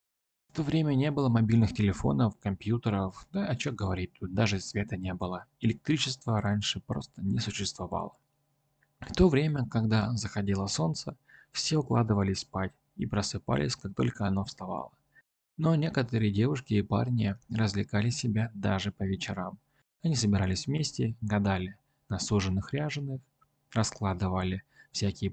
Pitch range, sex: 100-135 Hz, male